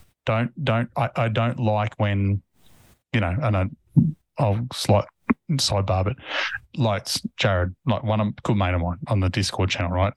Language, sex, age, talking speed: English, male, 20-39, 175 wpm